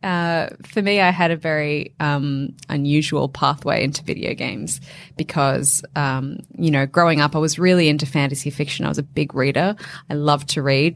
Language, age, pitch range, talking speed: English, 20-39, 145-165 Hz, 185 wpm